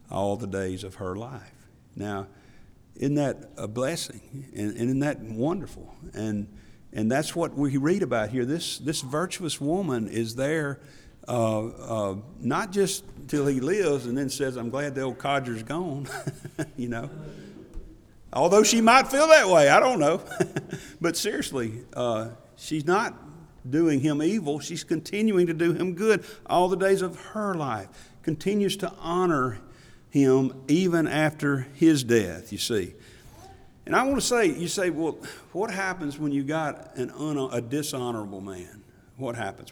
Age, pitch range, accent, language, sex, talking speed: 50-69, 110-155 Hz, American, English, male, 160 wpm